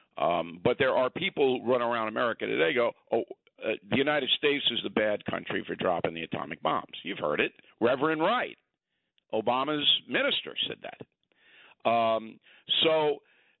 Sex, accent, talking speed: male, American, 160 wpm